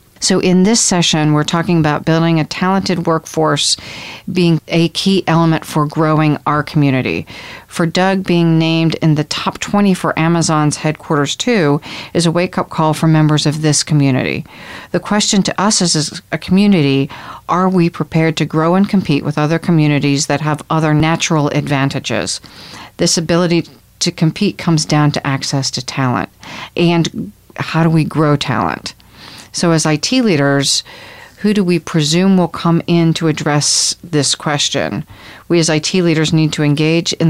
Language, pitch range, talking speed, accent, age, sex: English, 150-170 Hz, 160 wpm, American, 40-59, female